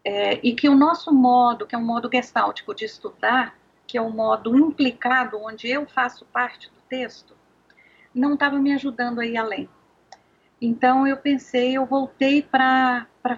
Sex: female